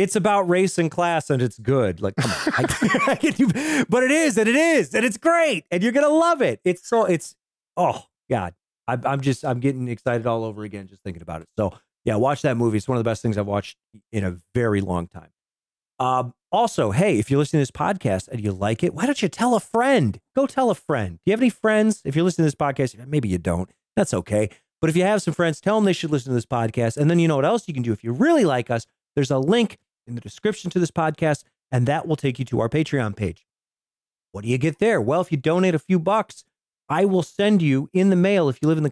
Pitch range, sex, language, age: 120-195 Hz, male, English, 30-49